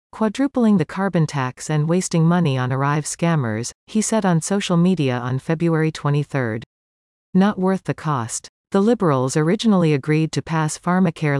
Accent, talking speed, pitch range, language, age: American, 155 wpm, 135-185 Hz, English, 40-59